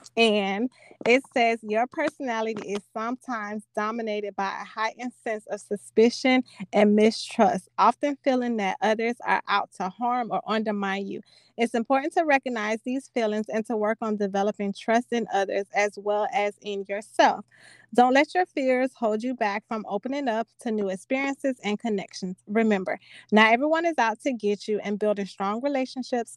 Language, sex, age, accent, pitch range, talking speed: English, female, 20-39, American, 205-245 Hz, 165 wpm